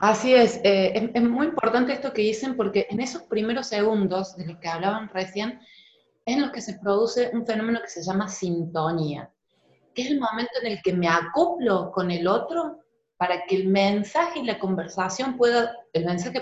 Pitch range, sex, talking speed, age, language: 180-245 Hz, female, 195 wpm, 30-49, Spanish